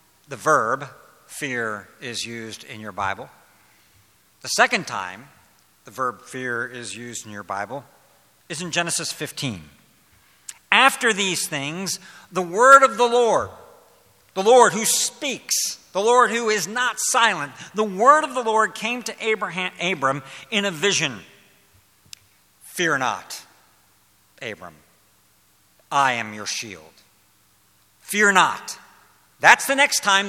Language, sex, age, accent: English, male, 60-79, American